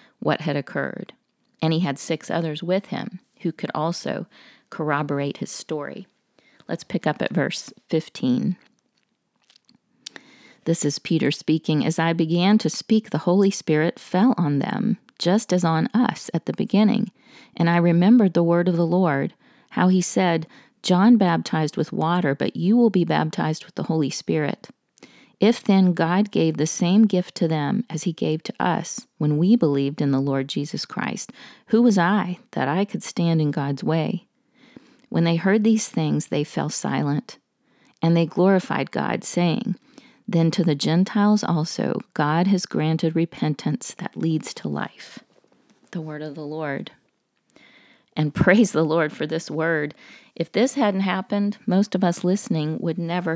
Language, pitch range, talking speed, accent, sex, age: English, 160-215 Hz, 165 wpm, American, female, 40-59